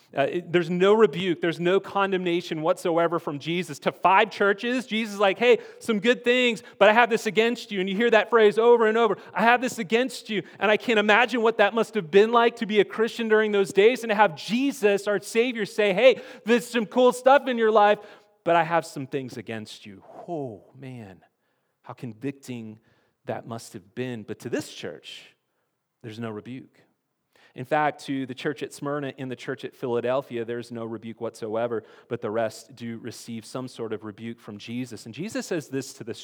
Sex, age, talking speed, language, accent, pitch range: male, 30-49, 210 wpm, English, American, 135-215 Hz